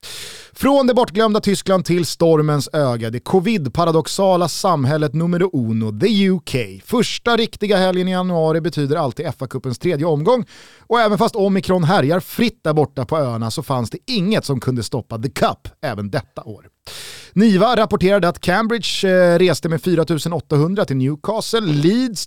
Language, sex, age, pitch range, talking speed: Swedish, male, 30-49, 140-195 Hz, 155 wpm